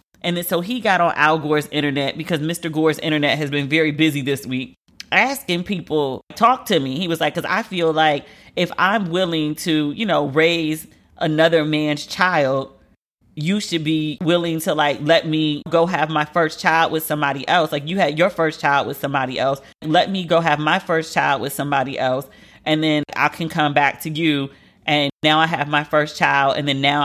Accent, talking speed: American, 210 wpm